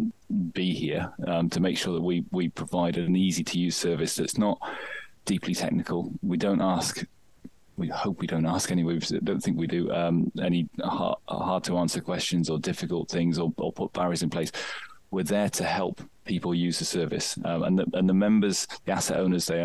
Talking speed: 200 wpm